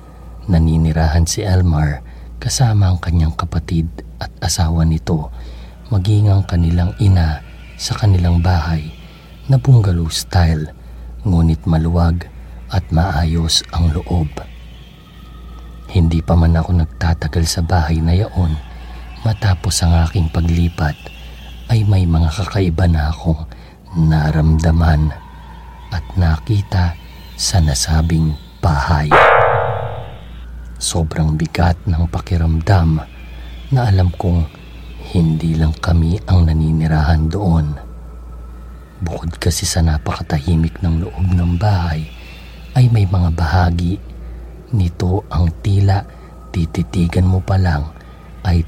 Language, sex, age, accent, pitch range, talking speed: Filipino, male, 50-69, native, 75-90 Hz, 100 wpm